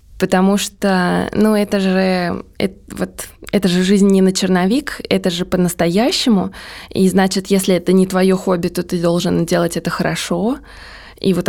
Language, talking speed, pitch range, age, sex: Russian, 145 wpm, 185-230 Hz, 20-39, female